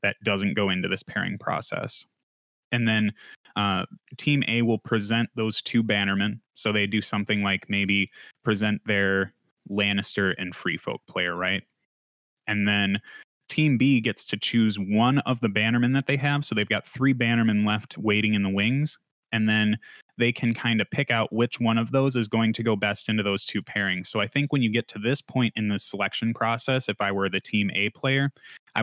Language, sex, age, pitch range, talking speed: English, male, 20-39, 105-120 Hz, 200 wpm